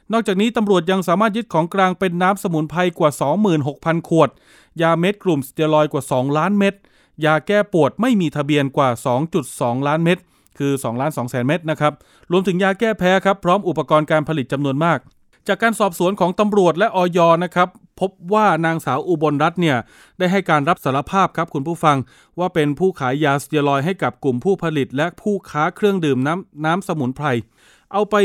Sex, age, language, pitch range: male, 20-39, Thai, 140-180 Hz